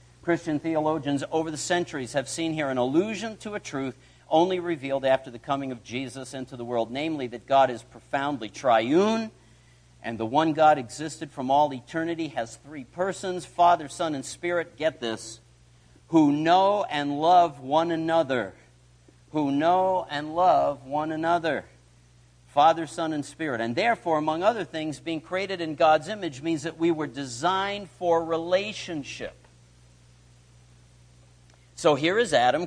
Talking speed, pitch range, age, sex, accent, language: 150 wpm, 110-160 Hz, 50-69, male, American, English